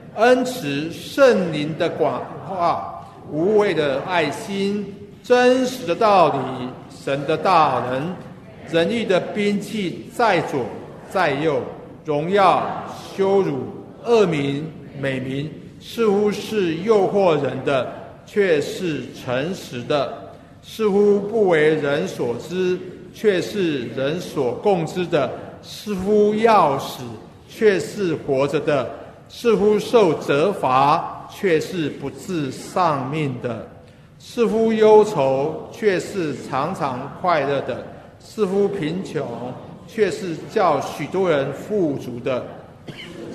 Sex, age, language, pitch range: male, 60-79, Chinese, 150-210 Hz